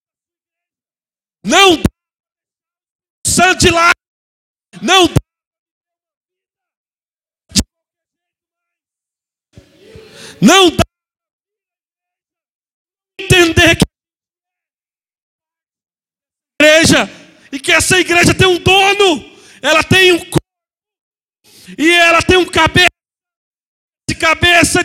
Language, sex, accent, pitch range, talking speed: Portuguese, male, Brazilian, 315-365 Hz, 65 wpm